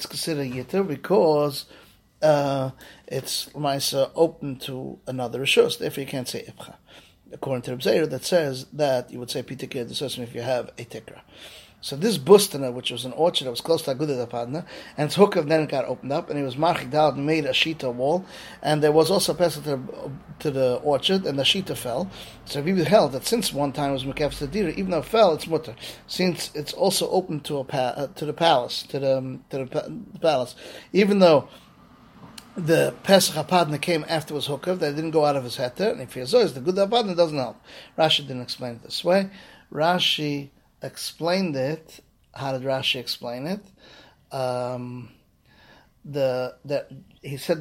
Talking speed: 185 wpm